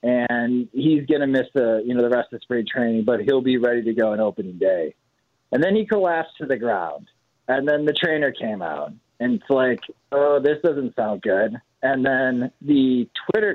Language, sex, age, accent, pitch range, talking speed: English, male, 30-49, American, 120-150 Hz, 210 wpm